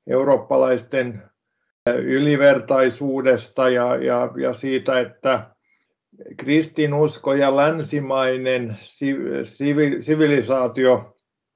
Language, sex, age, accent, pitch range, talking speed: Finnish, male, 50-69, native, 130-150 Hz, 50 wpm